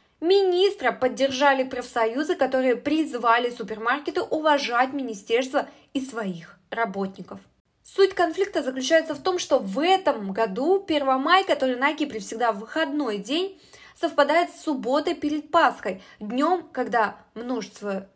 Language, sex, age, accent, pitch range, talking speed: Russian, female, 20-39, native, 235-305 Hz, 120 wpm